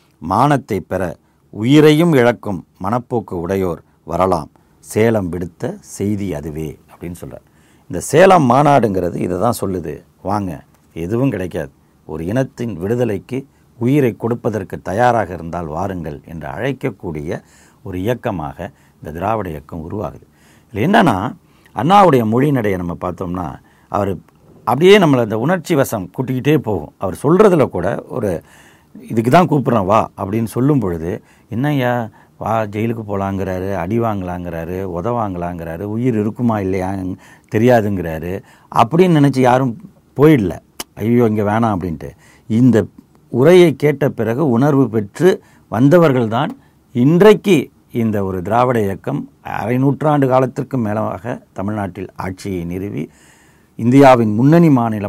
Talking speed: 110 wpm